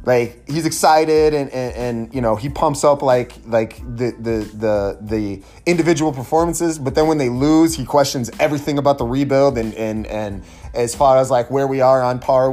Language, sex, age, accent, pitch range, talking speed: English, male, 30-49, American, 115-140 Hz, 200 wpm